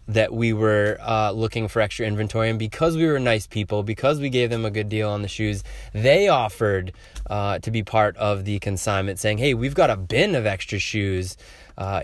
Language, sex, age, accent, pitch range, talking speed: English, male, 20-39, American, 95-115 Hz, 215 wpm